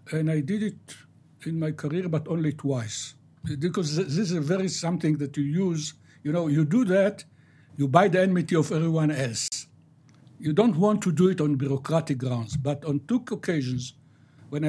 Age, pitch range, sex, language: 60-79, 140-165 Hz, male, English